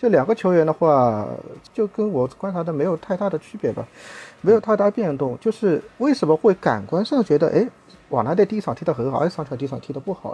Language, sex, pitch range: Chinese, male, 130-175 Hz